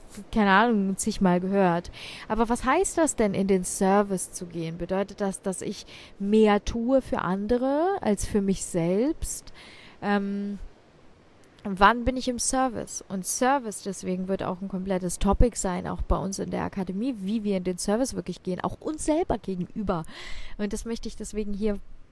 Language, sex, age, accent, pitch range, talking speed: German, female, 20-39, German, 190-230 Hz, 175 wpm